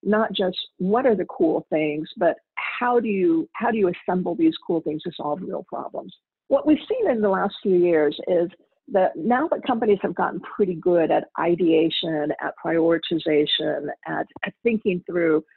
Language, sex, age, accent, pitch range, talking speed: English, female, 50-69, American, 170-220 Hz, 180 wpm